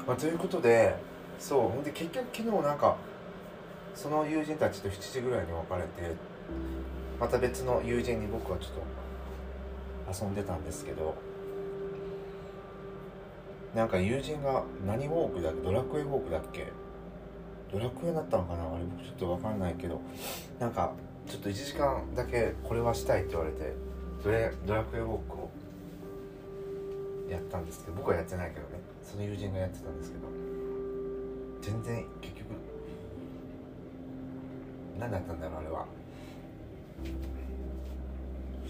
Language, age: Japanese, 30-49